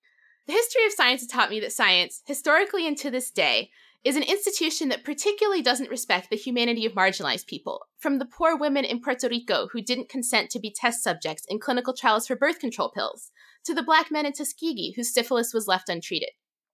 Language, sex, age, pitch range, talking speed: English, female, 20-39, 230-320 Hz, 210 wpm